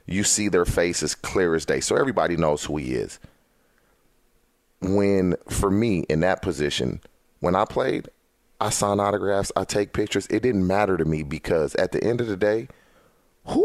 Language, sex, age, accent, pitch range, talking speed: English, male, 30-49, American, 85-105 Hz, 185 wpm